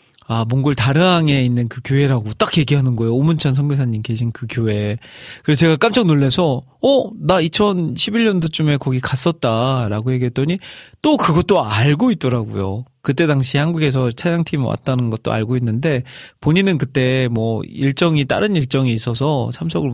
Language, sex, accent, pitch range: Korean, male, native, 120-155 Hz